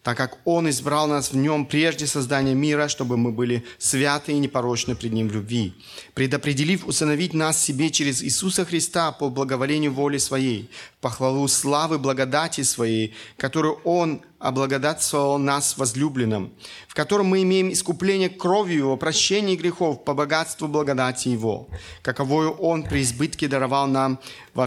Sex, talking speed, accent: male, 145 wpm, native